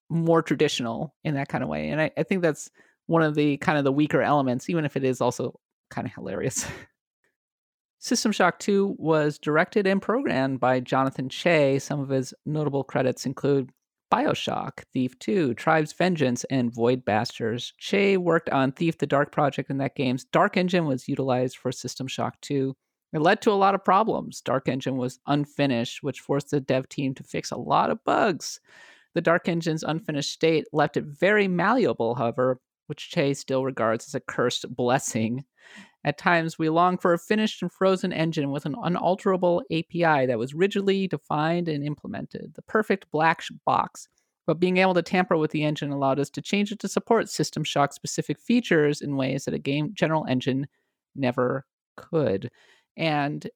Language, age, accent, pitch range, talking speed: English, 30-49, American, 135-175 Hz, 180 wpm